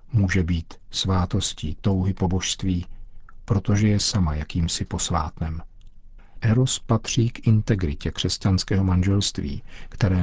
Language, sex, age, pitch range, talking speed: Czech, male, 50-69, 95-110 Hz, 105 wpm